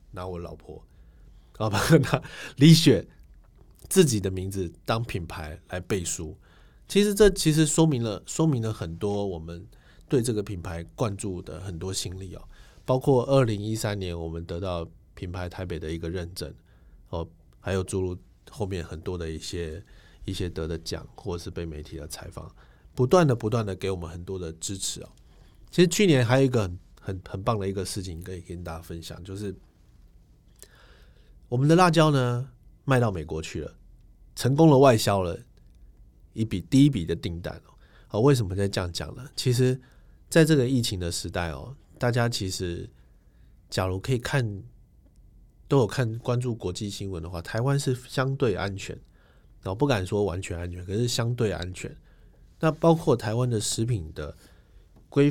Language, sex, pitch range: Chinese, male, 85-120 Hz